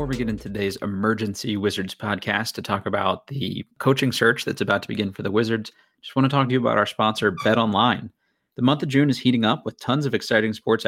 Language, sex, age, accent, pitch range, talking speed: English, male, 30-49, American, 105-130 Hz, 250 wpm